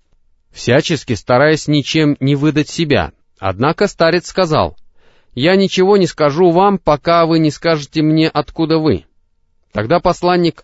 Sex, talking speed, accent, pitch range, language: male, 130 wpm, native, 120-165 Hz, Russian